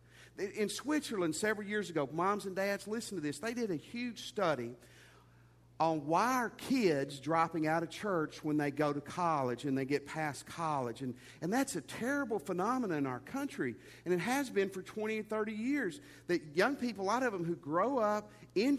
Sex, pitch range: male, 130-210 Hz